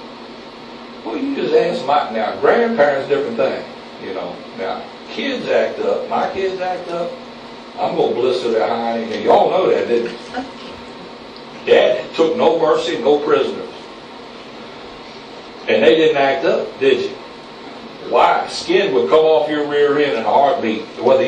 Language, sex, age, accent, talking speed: English, male, 60-79, American, 160 wpm